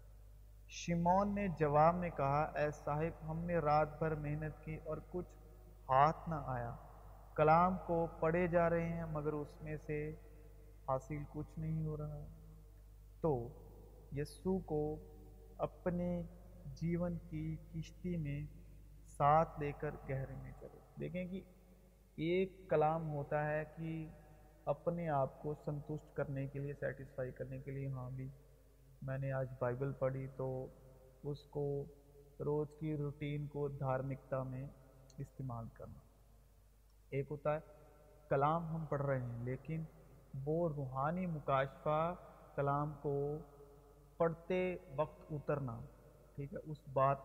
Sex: male